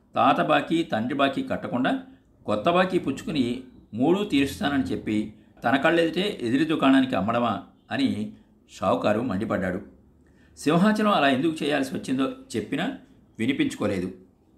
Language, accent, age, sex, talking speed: Telugu, native, 60-79, male, 105 wpm